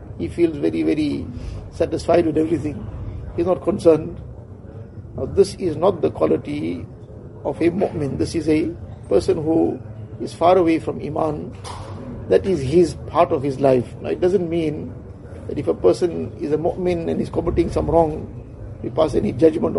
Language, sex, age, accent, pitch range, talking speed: English, male, 50-69, Indian, 110-170 Hz, 170 wpm